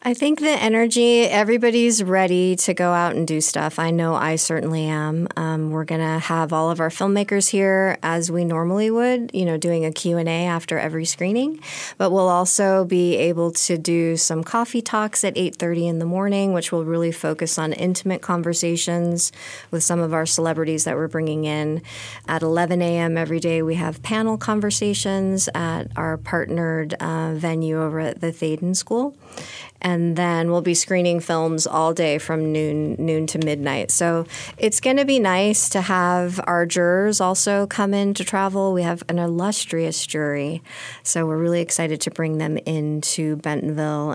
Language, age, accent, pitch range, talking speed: English, 30-49, American, 160-185 Hz, 180 wpm